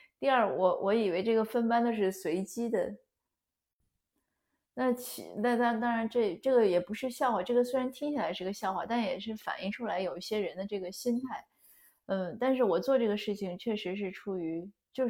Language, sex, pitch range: Chinese, female, 180-225 Hz